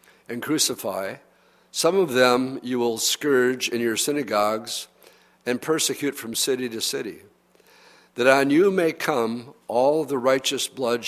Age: 50-69